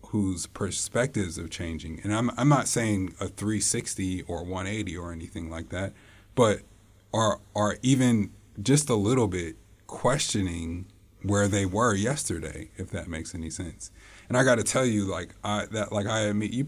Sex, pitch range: male, 90-105 Hz